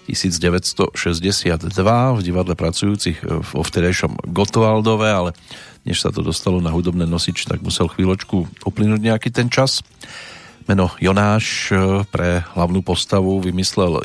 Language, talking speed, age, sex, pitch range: Slovak, 120 wpm, 40-59, male, 90-110 Hz